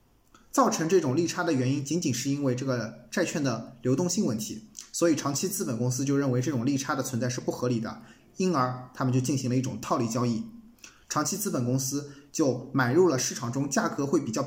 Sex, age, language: male, 20-39, Chinese